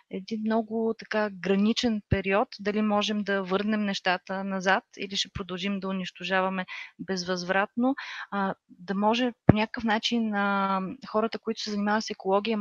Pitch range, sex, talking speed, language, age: 195-220 Hz, female, 135 wpm, Bulgarian, 30-49